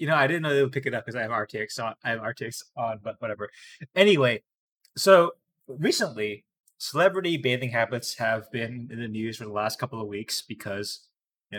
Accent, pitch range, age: American, 110-135 Hz, 20-39